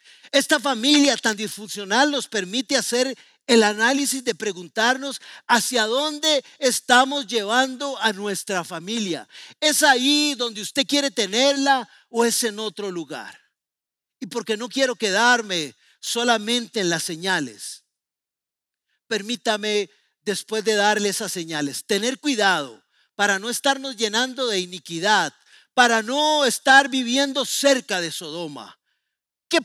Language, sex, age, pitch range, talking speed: Spanish, male, 40-59, 215-275 Hz, 120 wpm